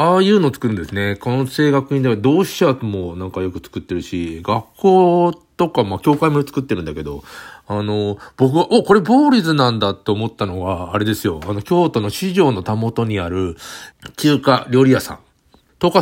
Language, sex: Japanese, male